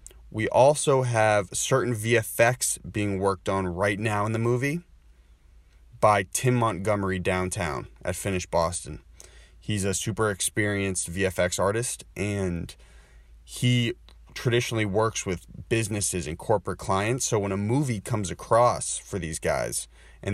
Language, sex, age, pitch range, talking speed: English, male, 20-39, 90-110 Hz, 135 wpm